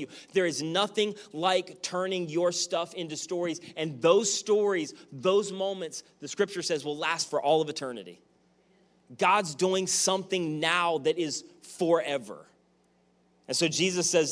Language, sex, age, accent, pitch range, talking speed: English, male, 30-49, American, 135-180 Hz, 145 wpm